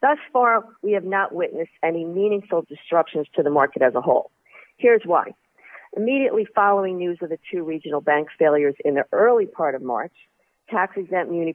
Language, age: English, 50-69